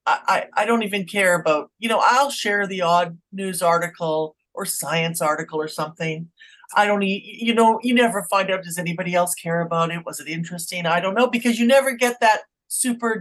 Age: 50-69